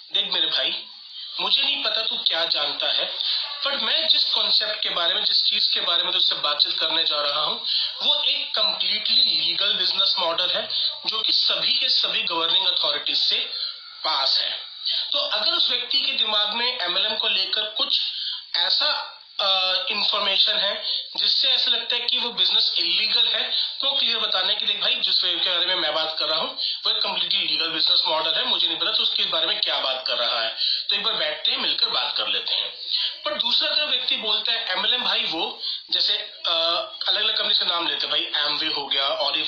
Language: Hindi